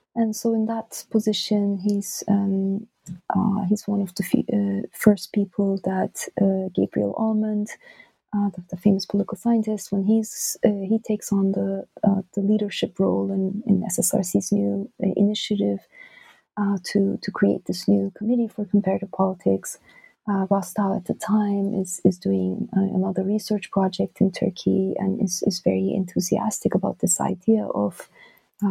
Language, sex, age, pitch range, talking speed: English, female, 30-49, 190-210 Hz, 160 wpm